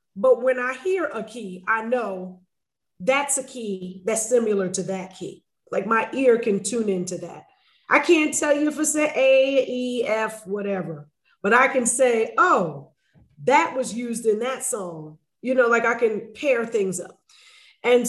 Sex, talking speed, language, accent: female, 180 wpm, English, American